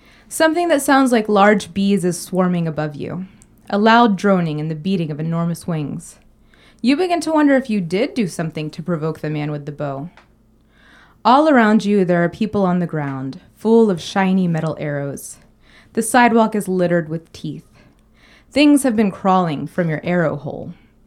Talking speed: 180 wpm